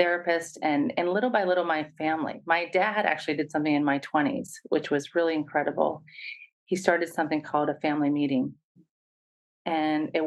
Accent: American